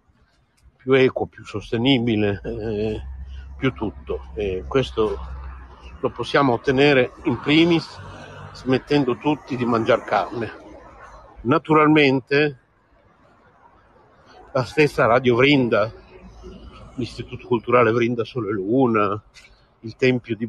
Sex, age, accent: male, 60-79, native